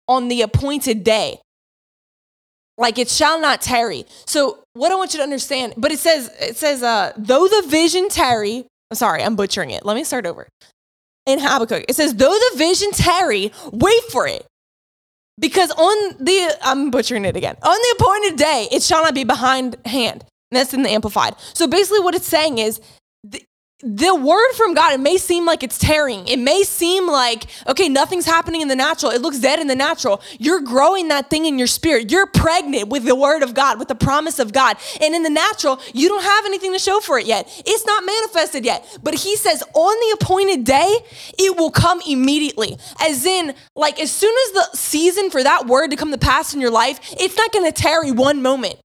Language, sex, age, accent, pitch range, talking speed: English, female, 10-29, American, 255-360 Hz, 210 wpm